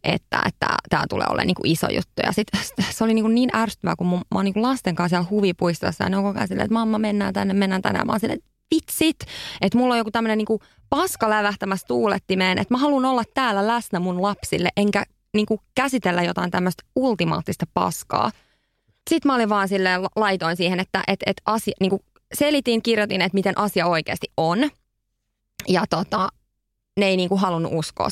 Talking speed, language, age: 185 wpm, Finnish, 20-39